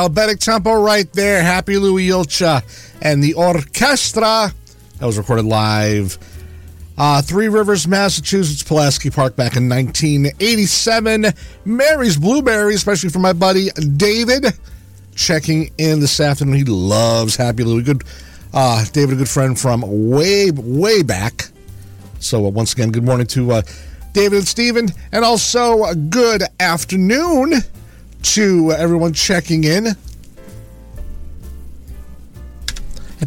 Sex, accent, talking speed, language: male, American, 125 wpm, English